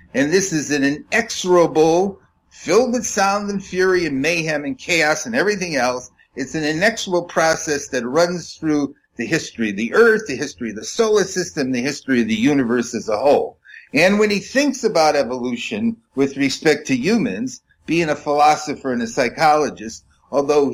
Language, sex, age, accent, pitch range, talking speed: English, male, 50-69, American, 135-220 Hz, 175 wpm